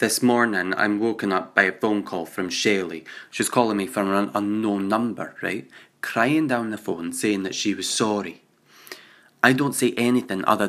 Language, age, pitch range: English, 20-39, 100-115 Hz